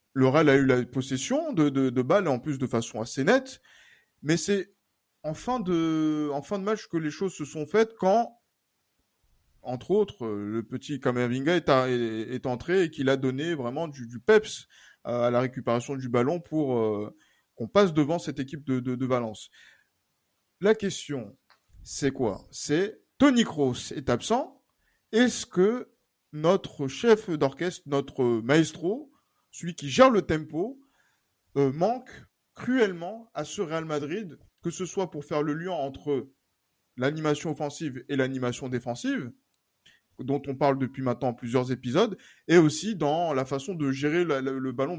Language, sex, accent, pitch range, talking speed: French, male, French, 130-180 Hz, 165 wpm